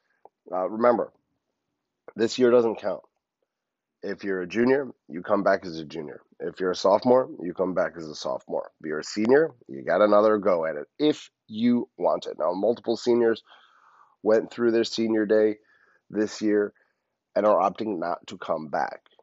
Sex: male